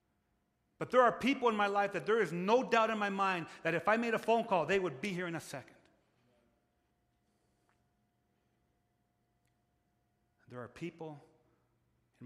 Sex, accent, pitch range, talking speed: male, American, 125-160 Hz, 160 wpm